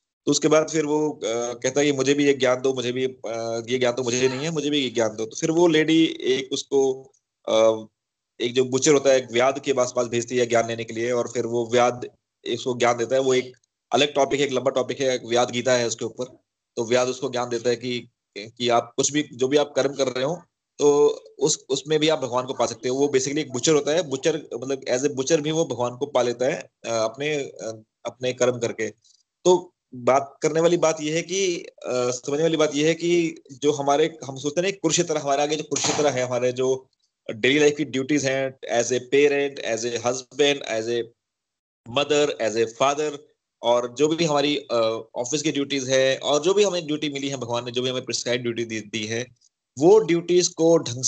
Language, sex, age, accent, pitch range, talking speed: Hindi, male, 30-49, native, 120-150 Hz, 150 wpm